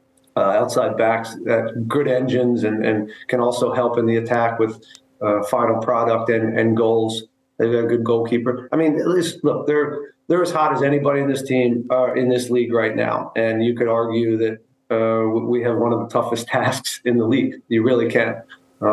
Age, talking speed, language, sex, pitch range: 40-59, 210 wpm, English, male, 115-130 Hz